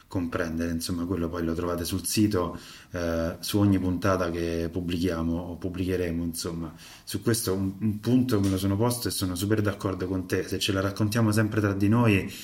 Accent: native